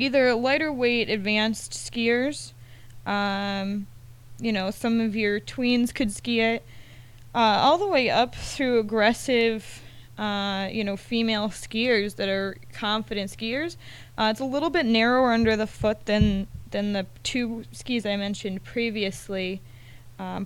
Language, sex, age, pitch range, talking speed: English, female, 20-39, 195-235 Hz, 145 wpm